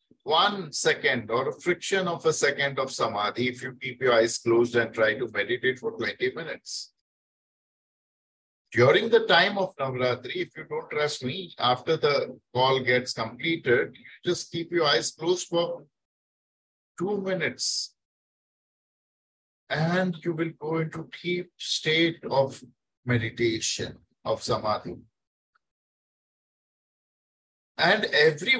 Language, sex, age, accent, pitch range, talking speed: English, male, 50-69, Indian, 120-180 Hz, 125 wpm